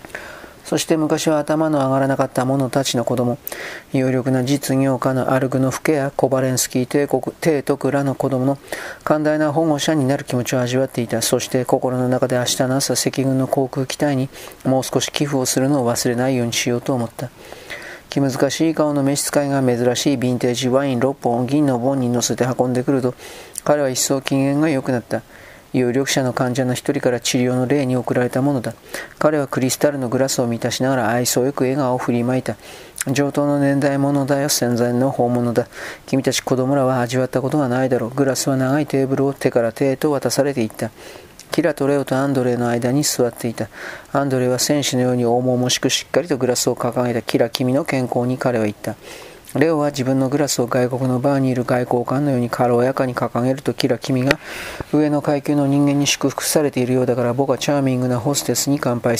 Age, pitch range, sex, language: 40-59, 125-140 Hz, male, Japanese